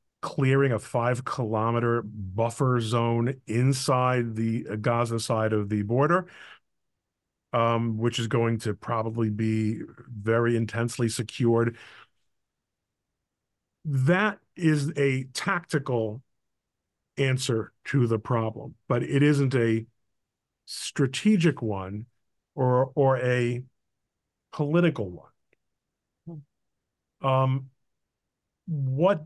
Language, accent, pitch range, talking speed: English, American, 115-135 Hz, 90 wpm